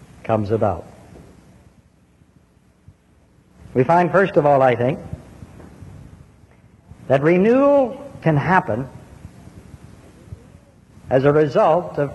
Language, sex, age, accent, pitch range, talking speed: English, male, 60-79, American, 130-190 Hz, 85 wpm